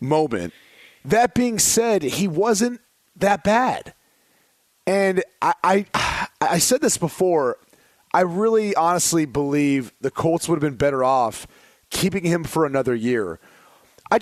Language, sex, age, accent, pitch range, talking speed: English, male, 30-49, American, 145-195 Hz, 135 wpm